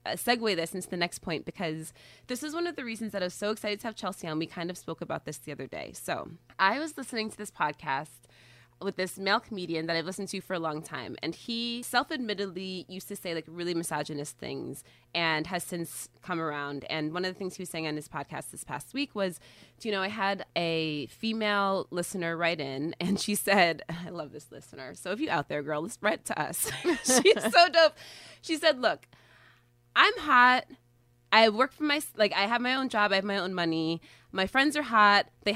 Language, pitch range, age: English, 160-225 Hz, 20-39